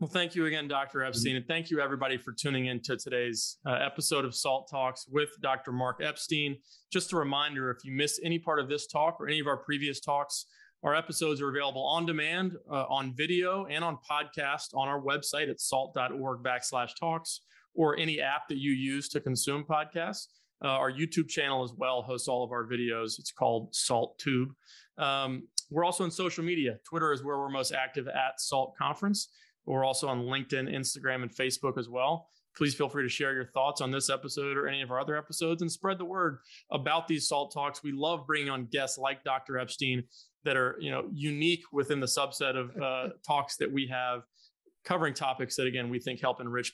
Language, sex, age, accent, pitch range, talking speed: English, male, 30-49, American, 125-150 Hz, 210 wpm